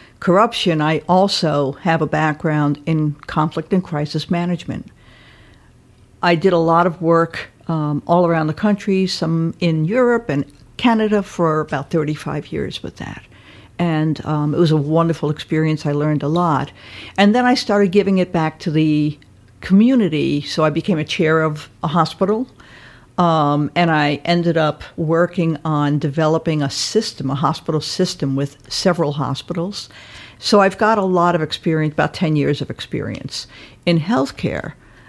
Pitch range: 145-175 Hz